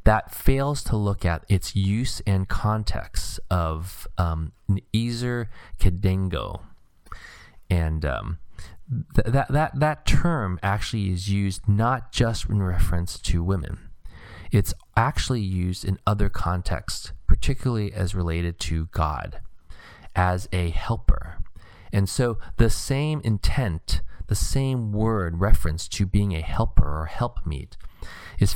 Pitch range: 85-110 Hz